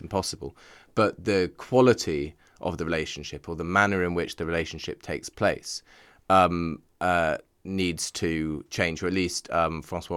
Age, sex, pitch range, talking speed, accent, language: 20-39, male, 80-100 Hz, 155 wpm, British, English